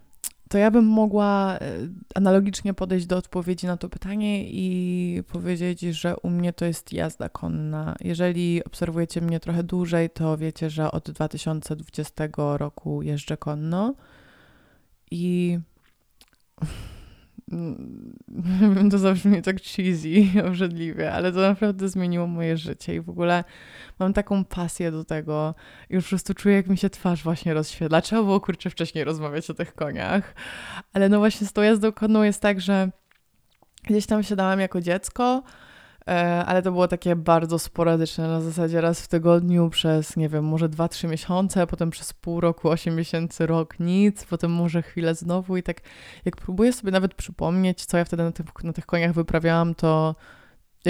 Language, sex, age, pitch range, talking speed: Polish, female, 20-39, 160-185 Hz, 160 wpm